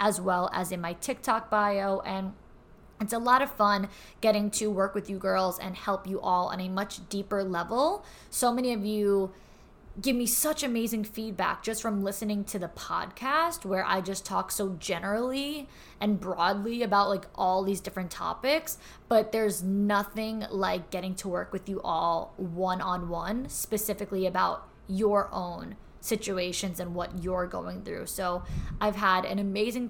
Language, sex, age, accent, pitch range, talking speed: English, female, 20-39, American, 185-220 Hz, 170 wpm